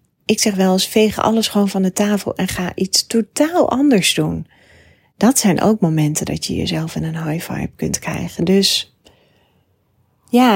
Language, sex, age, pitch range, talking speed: Dutch, female, 30-49, 170-205 Hz, 175 wpm